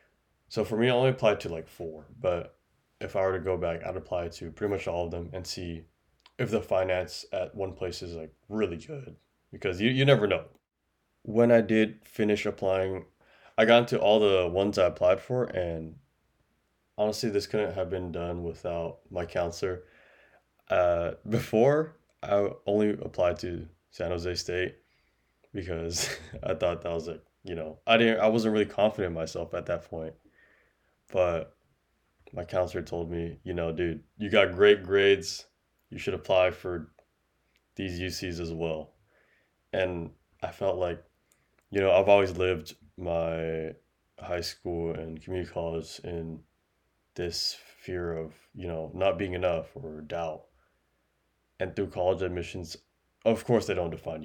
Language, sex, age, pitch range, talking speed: English, male, 20-39, 85-100 Hz, 165 wpm